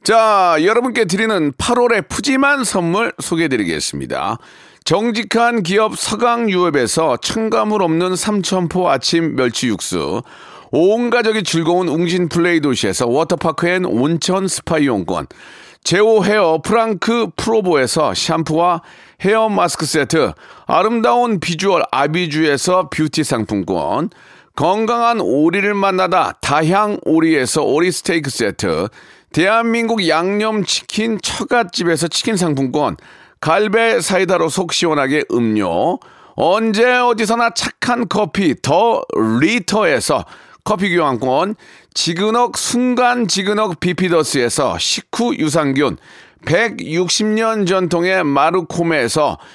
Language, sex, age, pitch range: Korean, male, 40-59, 165-225 Hz